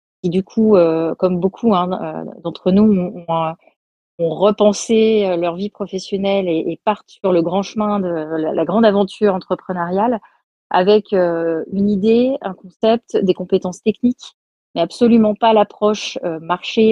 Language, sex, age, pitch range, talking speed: French, female, 30-49, 165-200 Hz, 130 wpm